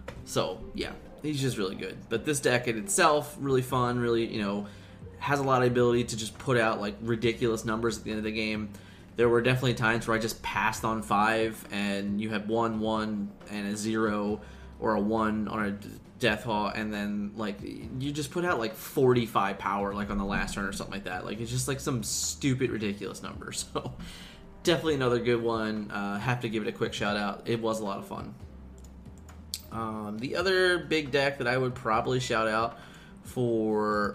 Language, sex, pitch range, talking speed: English, male, 105-120 Hz, 205 wpm